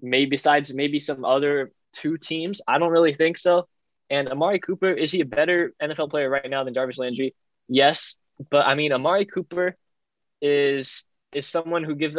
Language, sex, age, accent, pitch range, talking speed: English, male, 10-29, American, 145-175 Hz, 180 wpm